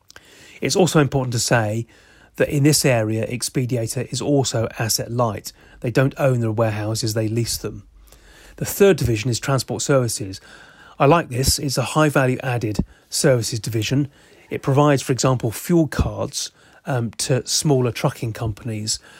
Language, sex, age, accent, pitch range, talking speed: English, male, 30-49, British, 115-135 Hz, 155 wpm